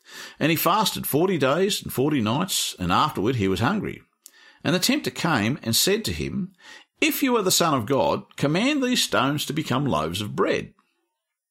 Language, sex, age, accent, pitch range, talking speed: English, male, 50-69, Australian, 115-185 Hz, 190 wpm